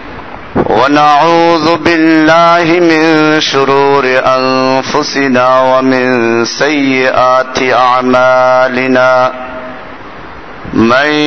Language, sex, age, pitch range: Bengali, male, 50-69, 130-170 Hz